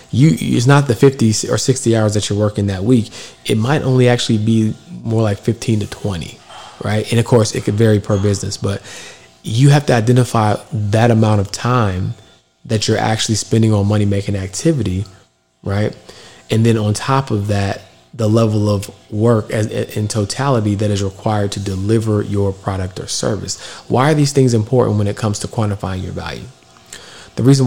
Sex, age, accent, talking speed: male, 20-39, American, 180 wpm